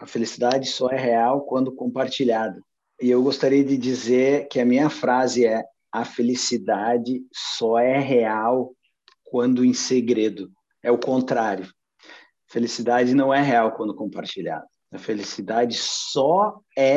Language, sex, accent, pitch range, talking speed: Portuguese, male, Brazilian, 115-130 Hz, 135 wpm